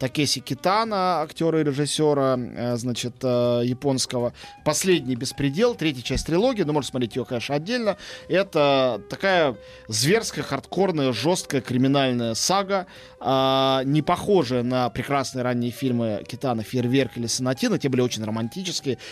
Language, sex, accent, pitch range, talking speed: Russian, male, native, 125-155 Hz, 120 wpm